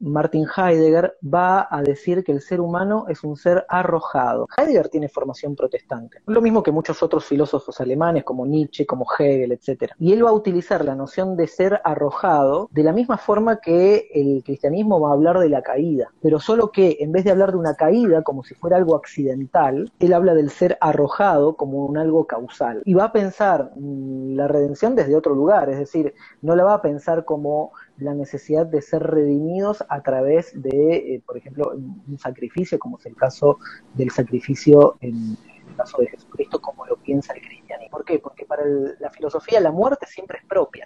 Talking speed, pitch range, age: 200 wpm, 145-195 Hz, 30-49